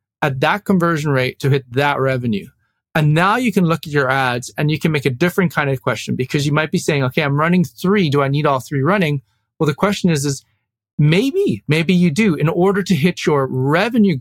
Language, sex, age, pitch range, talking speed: English, male, 30-49, 130-160 Hz, 230 wpm